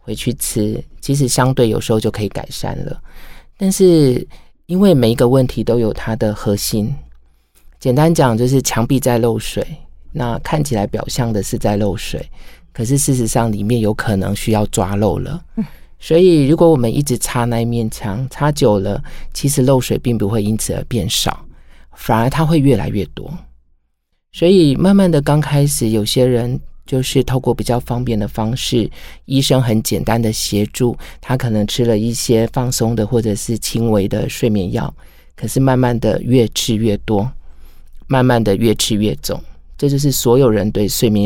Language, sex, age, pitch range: Chinese, male, 20-39, 105-135 Hz